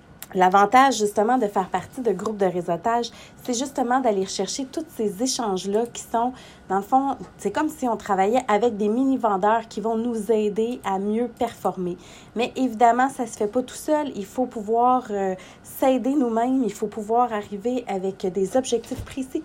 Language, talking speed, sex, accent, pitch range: French, 180 wpm, female, Canadian, 205-265 Hz